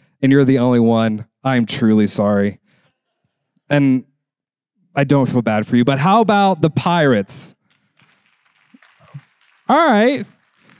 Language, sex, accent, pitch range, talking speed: English, male, American, 135-180 Hz, 120 wpm